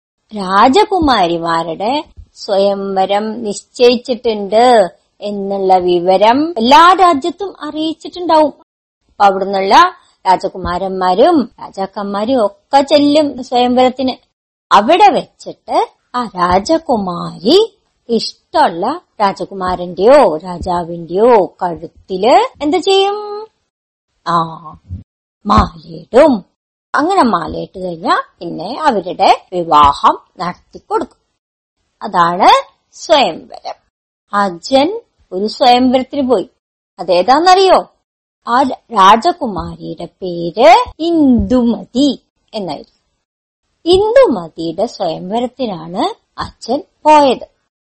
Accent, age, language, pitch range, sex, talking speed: native, 50-69, Malayalam, 185-295 Hz, male, 60 wpm